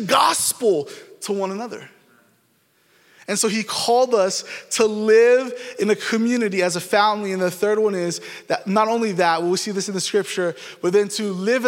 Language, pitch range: English, 205-260 Hz